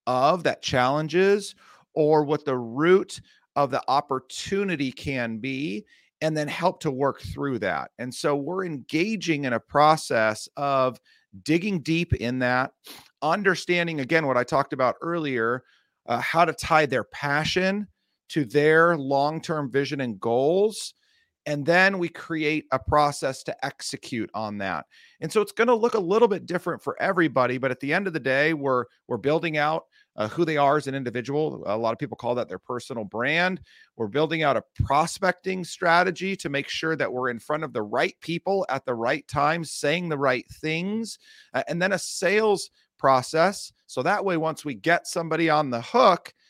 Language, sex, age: English, male, 40-59